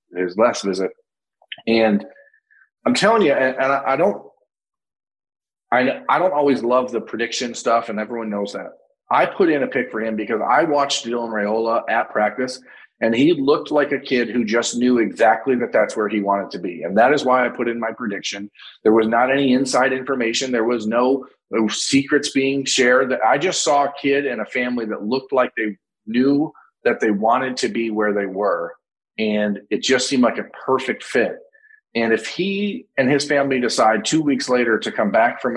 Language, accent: English, American